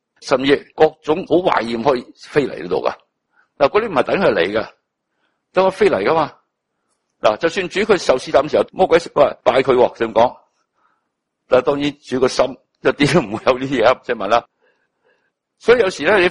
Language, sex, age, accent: Chinese, male, 60-79, native